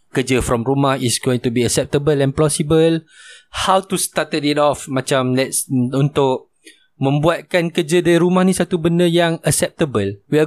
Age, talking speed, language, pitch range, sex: 20-39, 165 wpm, Malay, 125-150 Hz, male